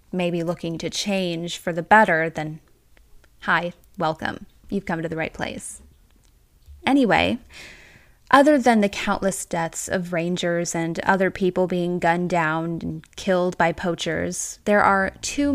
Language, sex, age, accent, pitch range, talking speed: English, female, 10-29, American, 170-200 Hz, 145 wpm